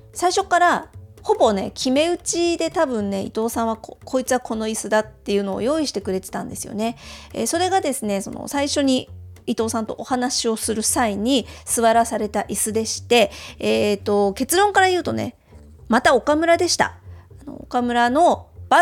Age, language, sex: 40-59, Japanese, female